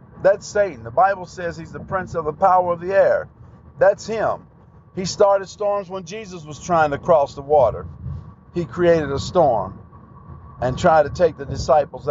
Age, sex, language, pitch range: 50-69, male, English, 135-190 Hz